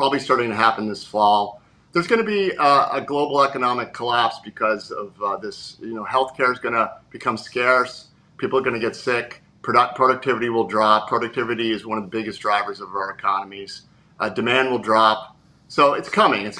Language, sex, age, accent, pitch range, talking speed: English, male, 40-59, American, 110-130 Hz, 200 wpm